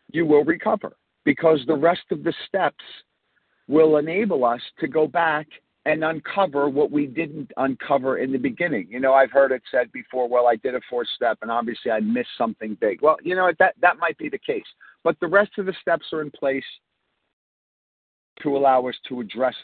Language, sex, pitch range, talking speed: English, male, 130-170 Hz, 200 wpm